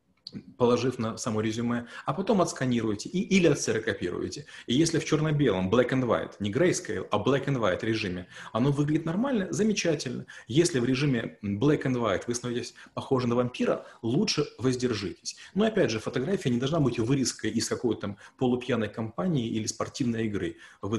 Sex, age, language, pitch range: male, 30-49, Russian, 110-145 Hz